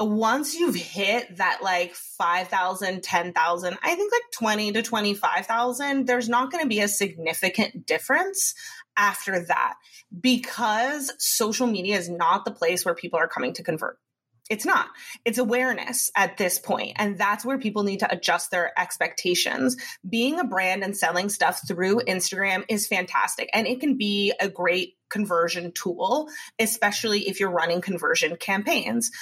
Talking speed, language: 155 wpm, English